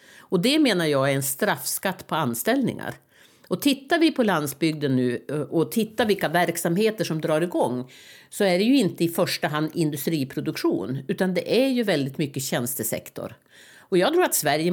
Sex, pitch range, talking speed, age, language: female, 155-215 Hz, 175 wpm, 60-79, Swedish